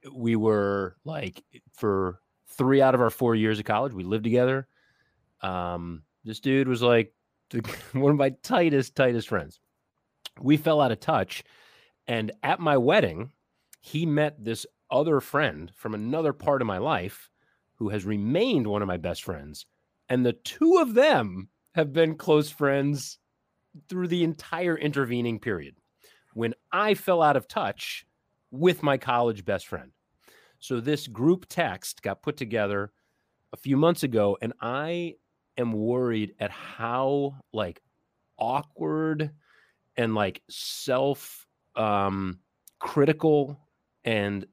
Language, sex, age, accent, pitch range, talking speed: English, male, 30-49, American, 105-145 Hz, 140 wpm